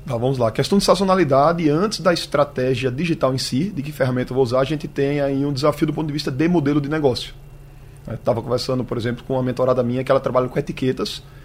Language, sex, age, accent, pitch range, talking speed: Portuguese, male, 20-39, Brazilian, 135-160 Hz, 235 wpm